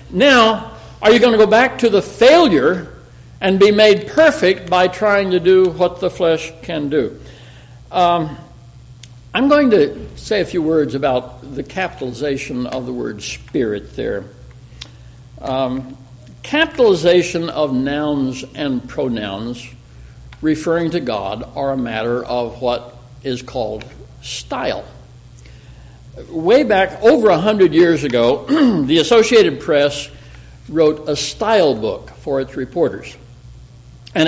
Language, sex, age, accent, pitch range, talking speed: English, male, 60-79, American, 125-175 Hz, 130 wpm